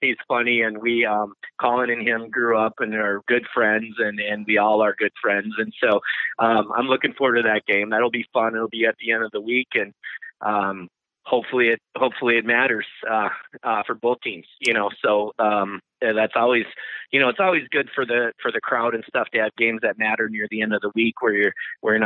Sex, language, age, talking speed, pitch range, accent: male, English, 30-49, 235 wpm, 105-120 Hz, American